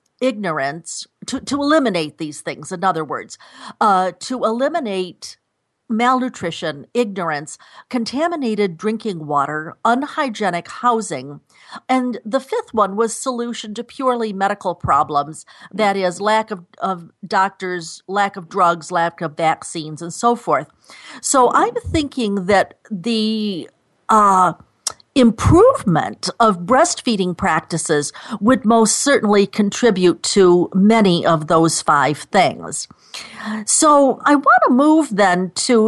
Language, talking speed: English, 115 wpm